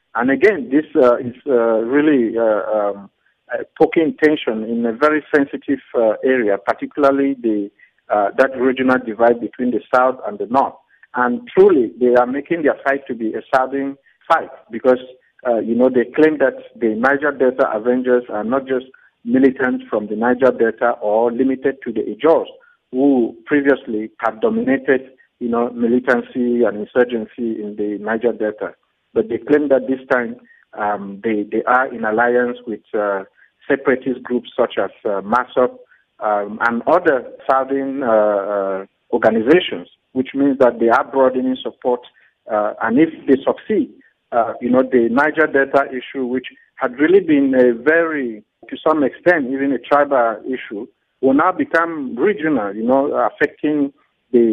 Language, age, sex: English, 50-69, male